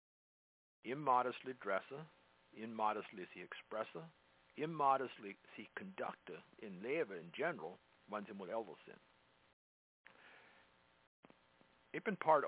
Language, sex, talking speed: English, male, 85 wpm